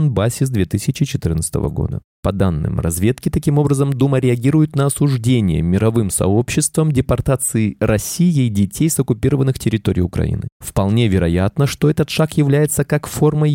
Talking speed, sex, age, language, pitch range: 135 wpm, male, 20-39, Russian, 100-140 Hz